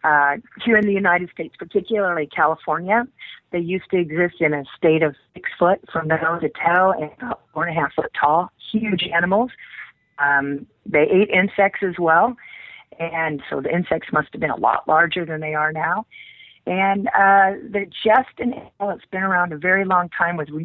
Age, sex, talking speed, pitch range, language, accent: 40-59, female, 195 wpm, 155-195 Hz, English, American